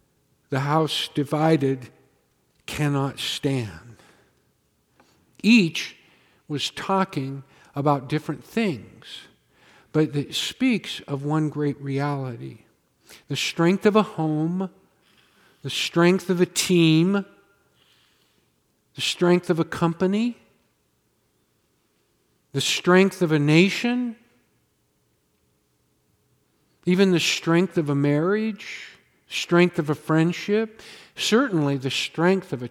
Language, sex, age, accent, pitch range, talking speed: English, male, 50-69, American, 135-180 Hz, 95 wpm